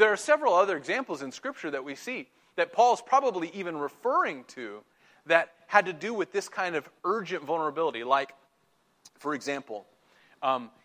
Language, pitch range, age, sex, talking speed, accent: English, 150-210 Hz, 30-49, male, 165 wpm, American